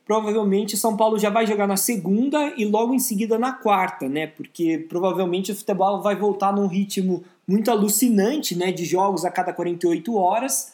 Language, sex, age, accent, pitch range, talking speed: Portuguese, male, 20-39, Brazilian, 195-245 Hz, 180 wpm